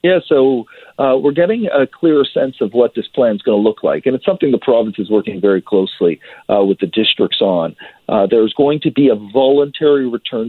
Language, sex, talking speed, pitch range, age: English, male, 220 wpm, 110-145 Hz, 40-59